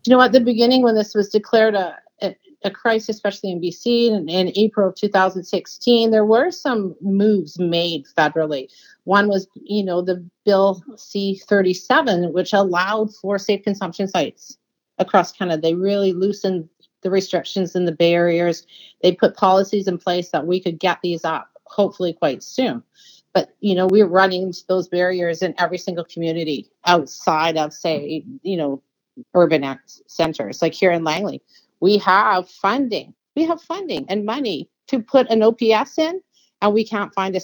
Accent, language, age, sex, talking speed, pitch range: American, English, 40-59, female, 165 wpm, 170-210 Hz